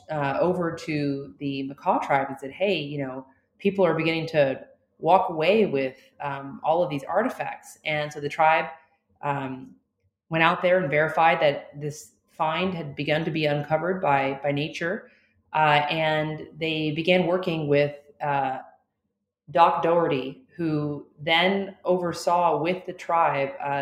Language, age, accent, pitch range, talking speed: English, 30-49, American, 145-175 Hz, 150 wpm